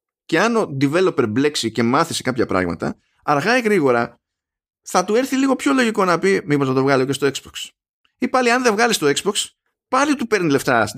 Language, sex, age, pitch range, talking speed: Greek, male, 20-39, 115-175 Hz, 215 wpm